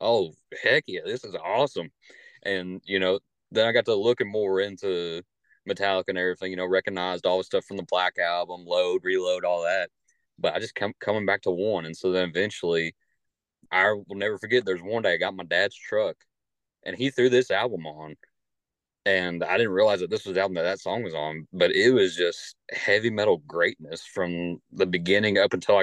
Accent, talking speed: American, 205 wpm